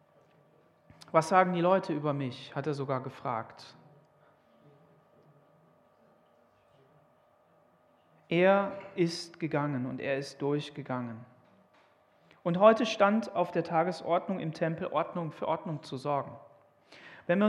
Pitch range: 170-210 Hz